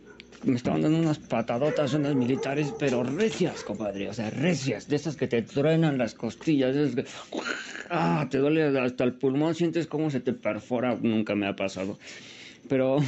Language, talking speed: Spanish, 165 wpm